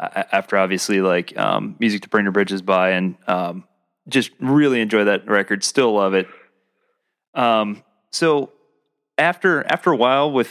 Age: 20-39